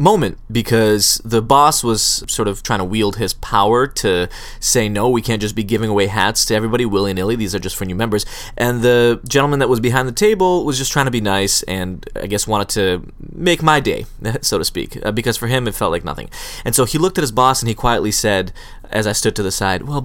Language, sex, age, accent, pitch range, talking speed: English, male, 20-39, American, 100-125 Hz, 240 wpm